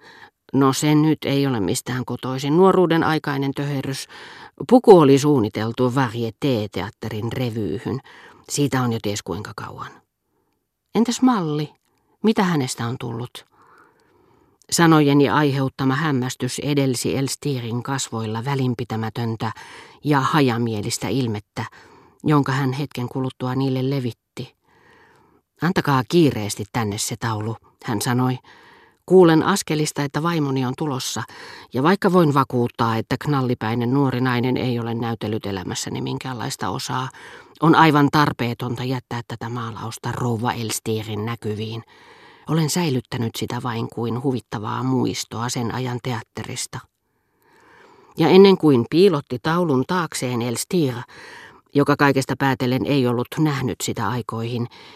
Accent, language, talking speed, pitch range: native, Finnish, 115 wpm, 115-145 Hz